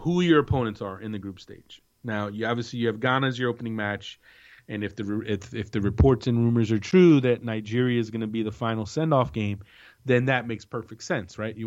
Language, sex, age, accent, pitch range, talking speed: English, male, 30-49, American, 105-125 Hz, 240 wpm